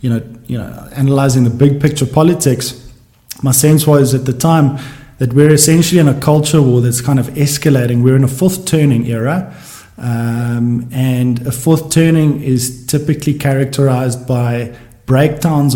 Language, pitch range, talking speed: English, 125-150 Hz, 160 wpm